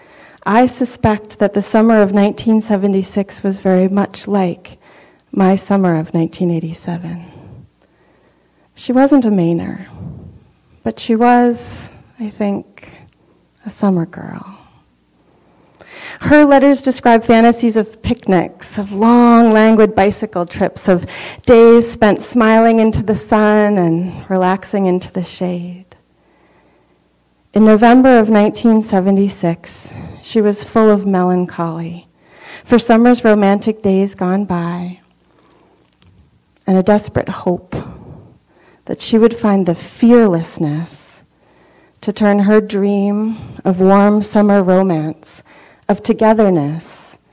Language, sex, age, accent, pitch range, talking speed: English, female, 30-49, American, 175-220 Hz, 110 wpm